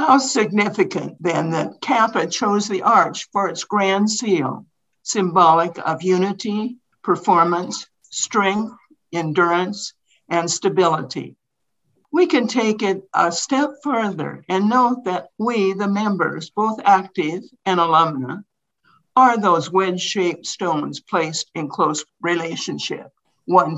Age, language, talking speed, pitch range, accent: 60-79, English, 115 wpm, 165-210 Hz, American